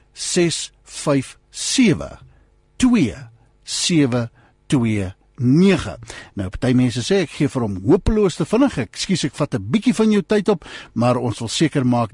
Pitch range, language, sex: 125-190 Hz, English, male